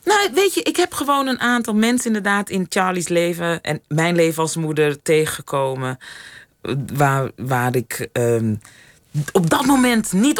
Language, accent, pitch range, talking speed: Dutch, Dutch, 150-210 Hz, 155 wpm